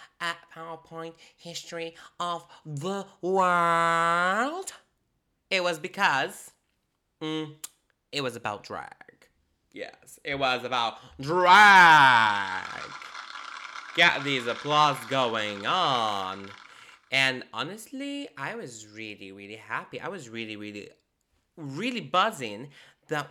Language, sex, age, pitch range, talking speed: English, male, 20-39, 120-175 Hz, 100 wpm